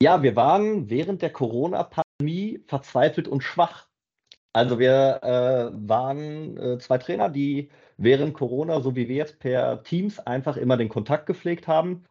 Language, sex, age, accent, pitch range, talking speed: German, male, 40-59, German, 120-150 Hz, 155 wpm